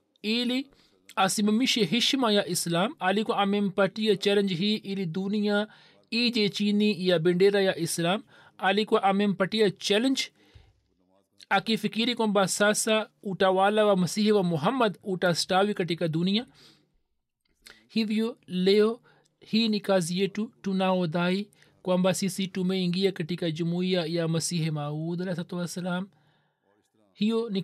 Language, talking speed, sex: Swahili, 115 wpm, male